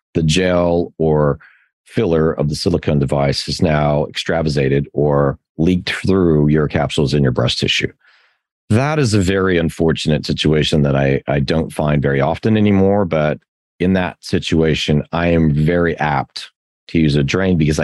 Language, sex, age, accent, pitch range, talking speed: English, male, 40-59, American, 70-90 Hz, 160 wpm